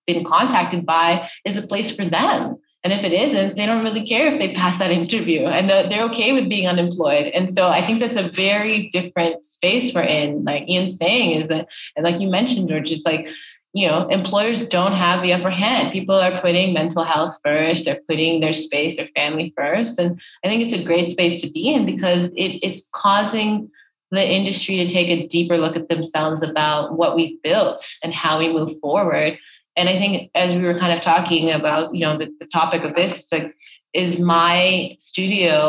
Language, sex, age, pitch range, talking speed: English, female, 20-39, 160-185 Hz, 210 wpm